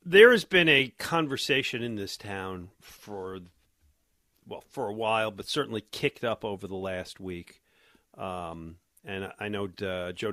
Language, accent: English, American